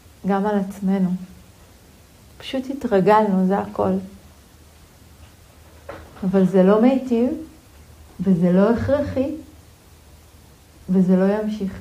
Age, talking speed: 40-59, 85 wpm